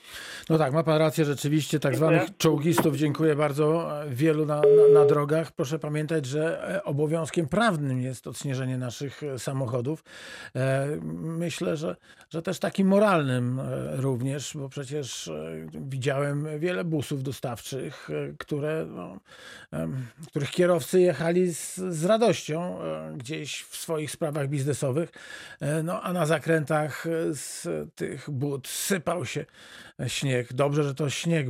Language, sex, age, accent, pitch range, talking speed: Polish, male, 50-69, native, 135-165 Hz, 130 wpm